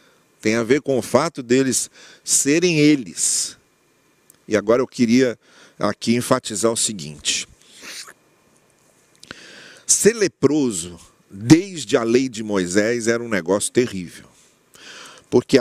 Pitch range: 120-190 Hz